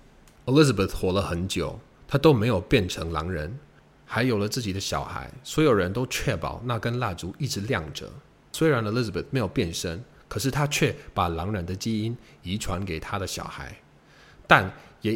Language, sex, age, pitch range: Chinese, male, 20-39, 90-130 Hz